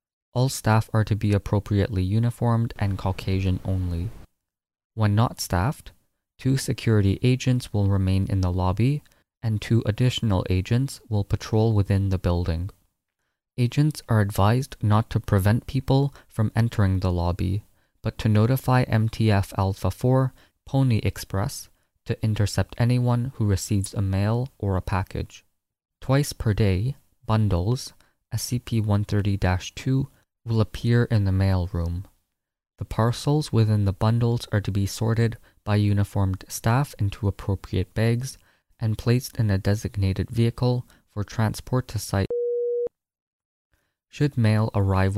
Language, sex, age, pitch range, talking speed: English, male, 20-39, 95-120 Hz, 135 wpm